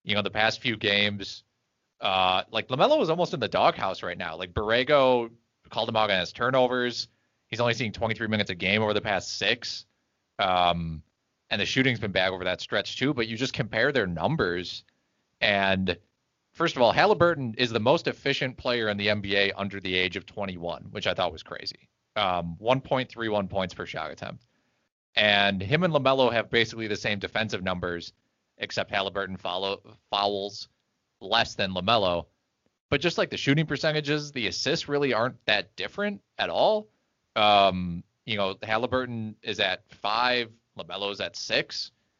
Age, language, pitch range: 30-49, English, 95-125 Hz